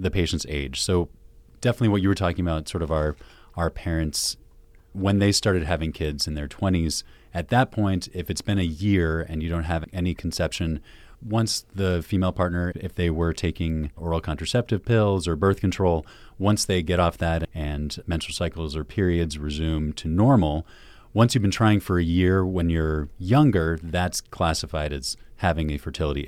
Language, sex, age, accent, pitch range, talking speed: English, male, 30-49, American, 80-95 Hz, 185 wpm